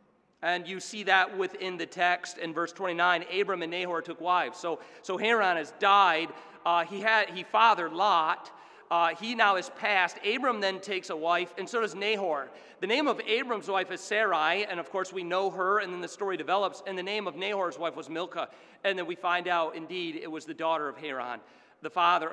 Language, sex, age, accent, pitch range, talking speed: English, male, 40-59, American, 160-195 Hz, 215 wpm